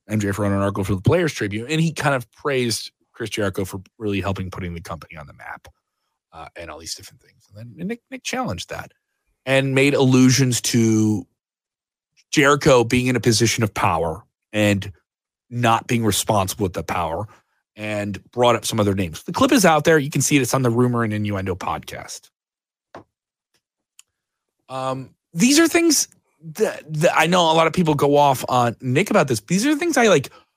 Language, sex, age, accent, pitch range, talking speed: English, male, 30-49, American, 110-175 Hz, 195 wpm